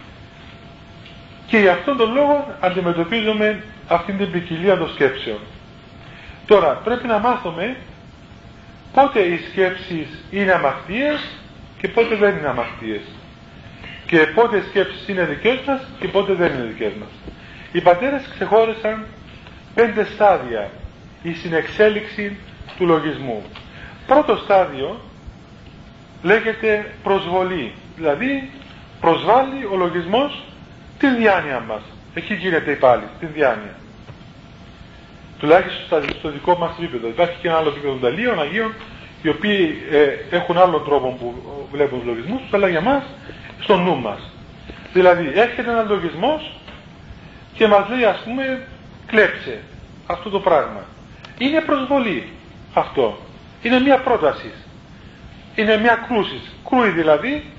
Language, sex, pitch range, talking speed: Greek, male, 165-230 Hz, 120 wpm